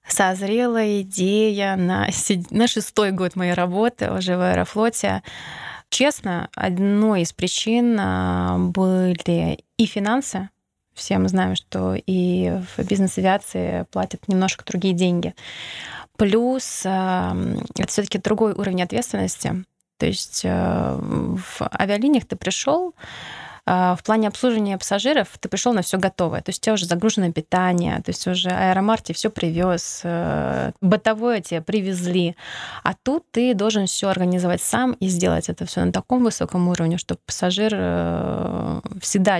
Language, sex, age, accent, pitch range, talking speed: Russian, female, 20-39, native, 175-215 Hz, 130 wpm